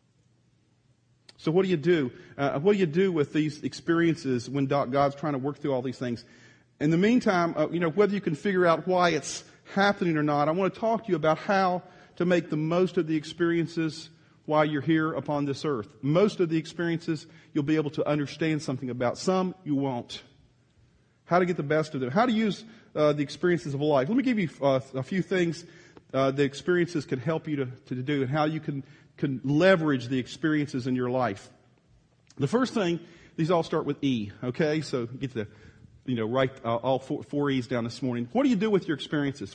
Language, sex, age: English, male, 40-59